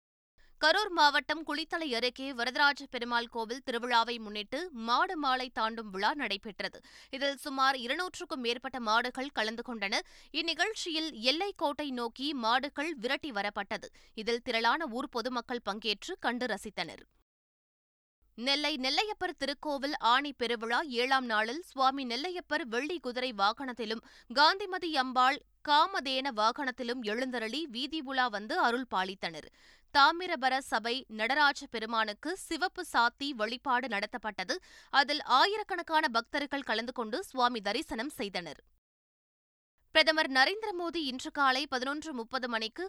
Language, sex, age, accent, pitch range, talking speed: Tamil, female, 20-39, native, 230-295 Hz, 110 wpm